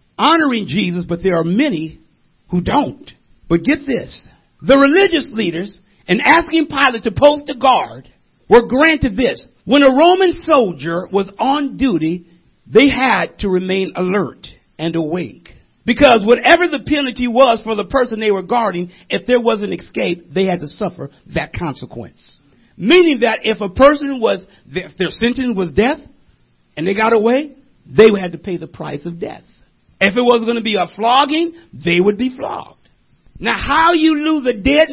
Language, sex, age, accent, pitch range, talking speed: English, male, 50-69, American, 165-265 Hz, 175 wpm